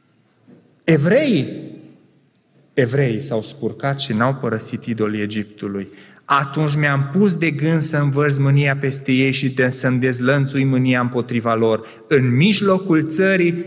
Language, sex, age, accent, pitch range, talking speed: Romanian, male, 20-39, native, 115-150 Hz, 125 wpm